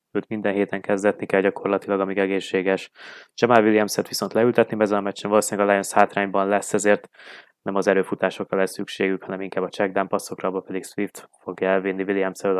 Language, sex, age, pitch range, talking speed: Hungarian, male, 20-39, 95-110 Hz, 175 wpm